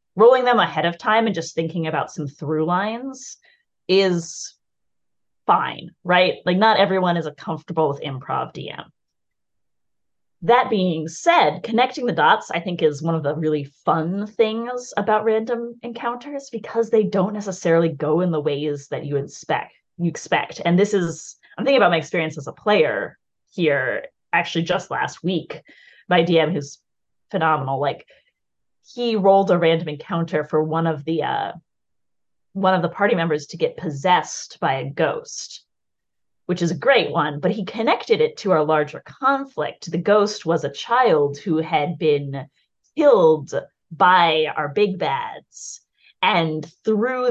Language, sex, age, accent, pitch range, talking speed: English, female, 30-49, American, 155-220 Hz, 155 wpm